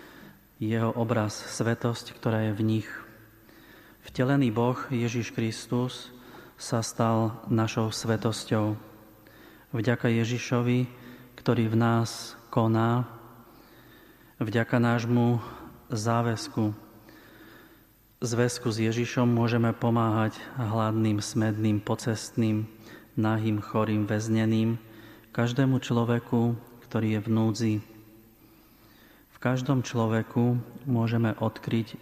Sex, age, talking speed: male, 30-49, 85 wpm